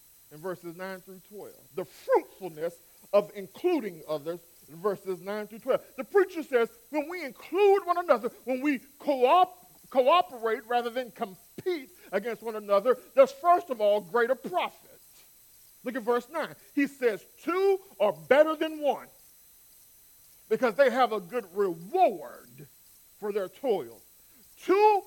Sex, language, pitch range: male, English, 205-315 Hz